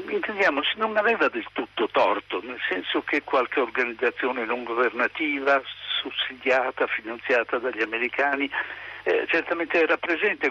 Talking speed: 115 wpm